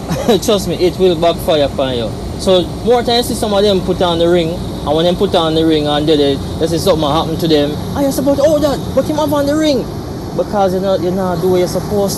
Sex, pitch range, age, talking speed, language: male, 170-210 Hz, 20-39, 250 wpm, English